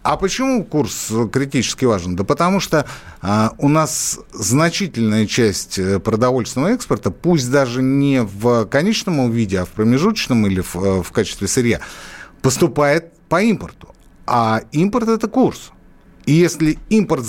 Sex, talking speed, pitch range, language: male, 140 wpm, 110-165 Hz, Russian